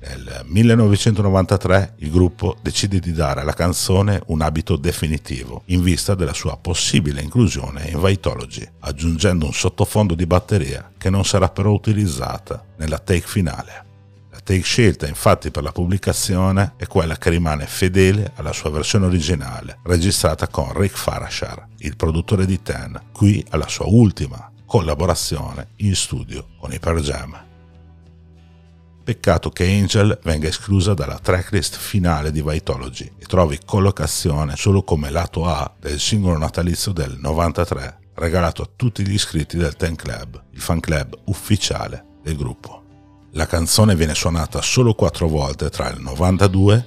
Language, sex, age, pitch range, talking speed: Italian, male, 60-79, 80-100 Hz, 145 wpm